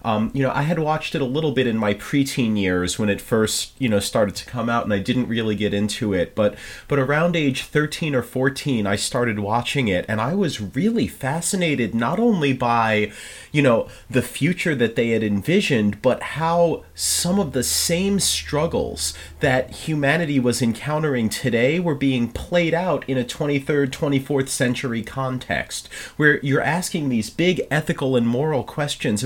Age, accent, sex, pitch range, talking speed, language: 30-49, American, male, 115-155 Hz, 180 wpm, English